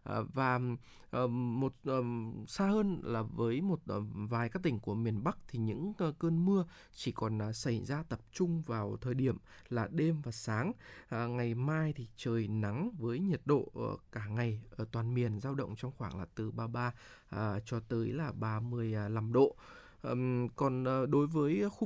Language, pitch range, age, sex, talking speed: Vietnamese, 115-145 Hz, 20-39, male, 160 wpm